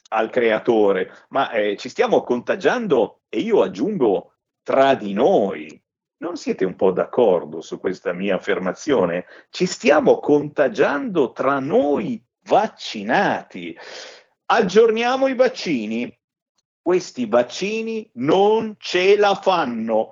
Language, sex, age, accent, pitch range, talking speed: Italian, male, 50-69, native, 120-190 Hz, 110 wpm